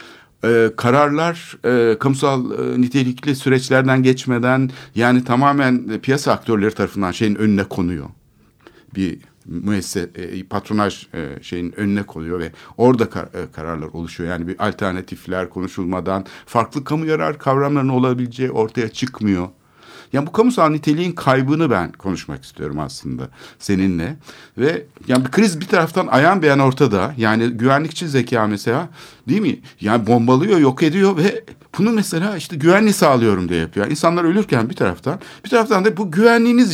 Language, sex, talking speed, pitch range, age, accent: Turkish, male, 140 wpm, 105-155 Hz, 60-79, native